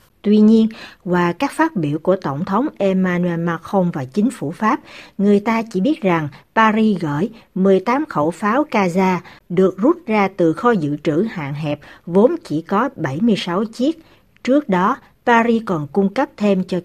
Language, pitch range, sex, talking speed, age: Vietnamese, 165-225 Hz, female, 170 wpm, 60-79